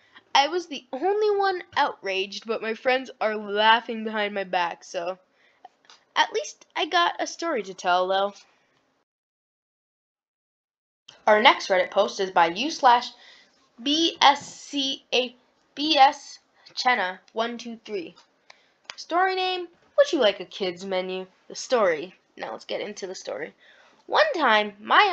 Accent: American